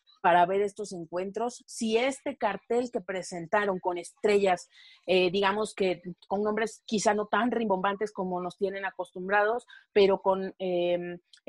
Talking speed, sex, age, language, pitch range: 140 wpm, female, 30-49, Spanish, 190-240 Hz